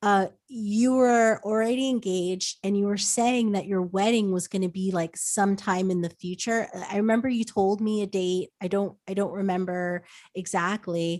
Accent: American